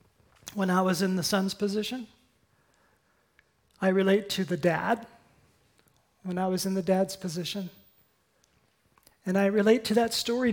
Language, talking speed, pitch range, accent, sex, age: English, 140 wpm, 190-225 Hz, American, male, 40-59